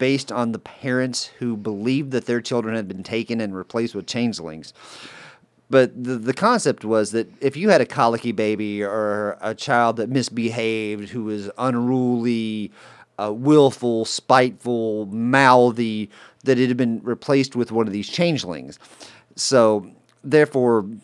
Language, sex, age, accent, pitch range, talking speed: English, male, 40-59, American, 110-130 Hz, 150 wpm